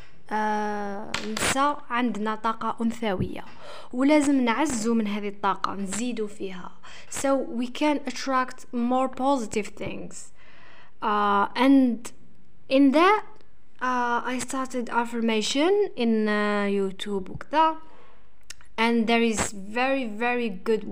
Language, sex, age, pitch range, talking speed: English, female, 10-29, 215-265 Hz, 75 wpm